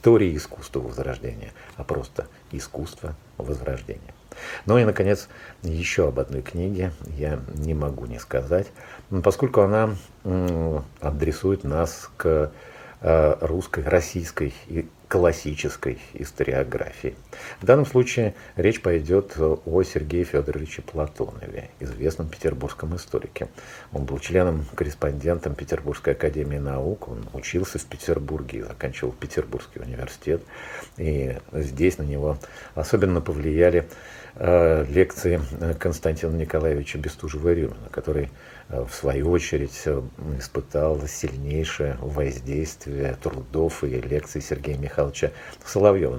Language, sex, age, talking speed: Russian, male, 50-69, 100 wpm